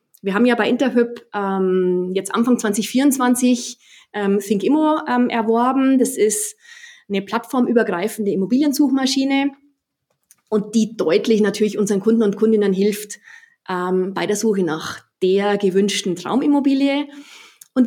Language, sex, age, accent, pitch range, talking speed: German, female, 20-39, German, 190-250 Hz, 120 wpm